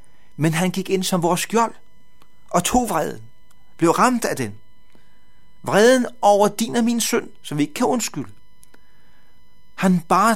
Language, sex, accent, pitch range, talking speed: Danish, male, native, 130-195 Hz, 155 wpm